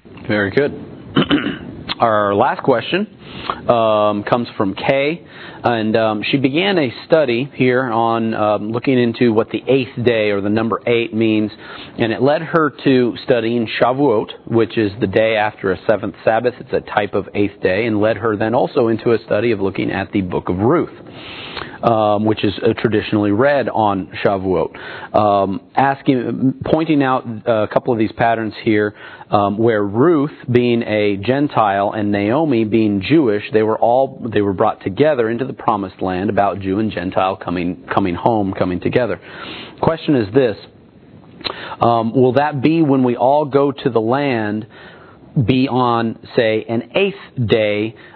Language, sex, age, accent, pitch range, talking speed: English, male, 40-59, American, 105-130 Hz, 165 wpm